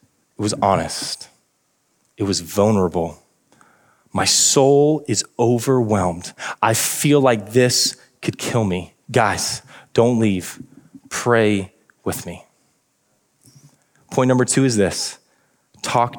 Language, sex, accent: English, male, American